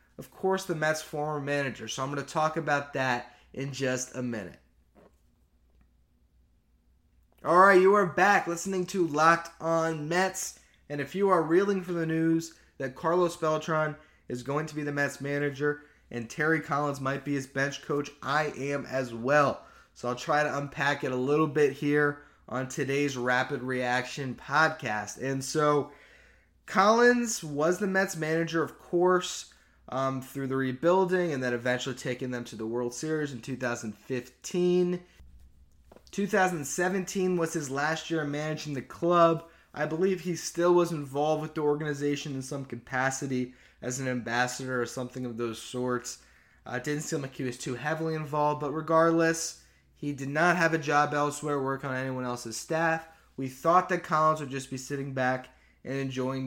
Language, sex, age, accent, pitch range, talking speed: English, male, 20-39, American, 130-165 Hz, 170 wpm